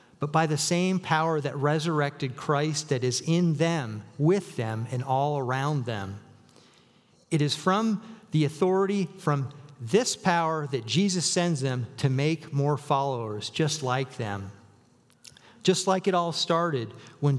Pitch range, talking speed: 135-170 Hz, 150 wpm